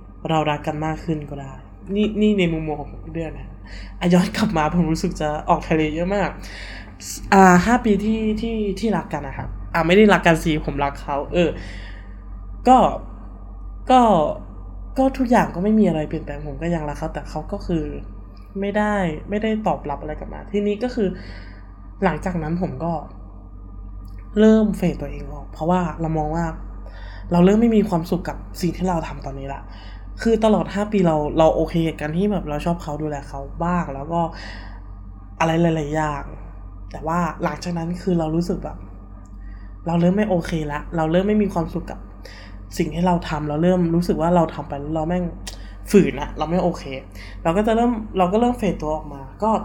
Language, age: Thai, 20-39